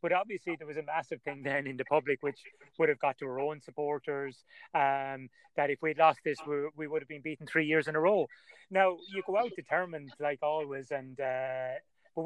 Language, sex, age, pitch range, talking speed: English, male, 30-49, 145-185 Hz, 225 wpm